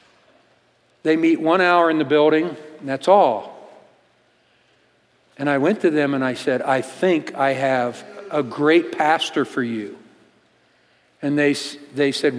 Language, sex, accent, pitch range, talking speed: English, male, American, 145-190 Hz, 150 wpm